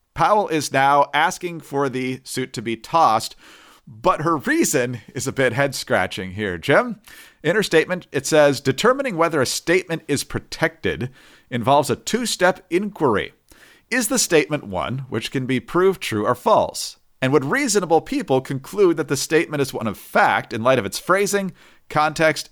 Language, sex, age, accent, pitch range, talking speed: English, male, 40-59, American, 125-180 Hz, 170 wpm